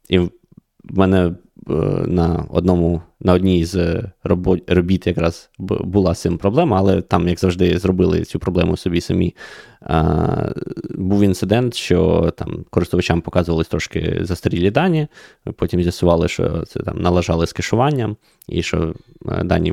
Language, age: Ukrainian, 20-39